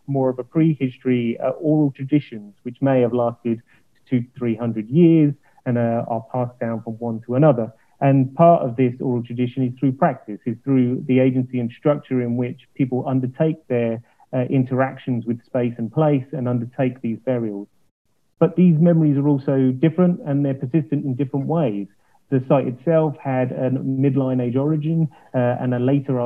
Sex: male